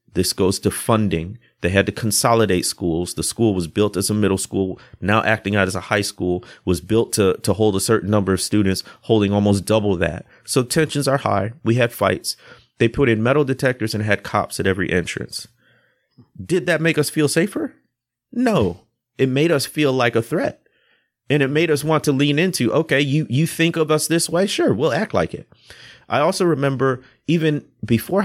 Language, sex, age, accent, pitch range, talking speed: English, male, 30-49, American, 100-135 Hz, 205 wpm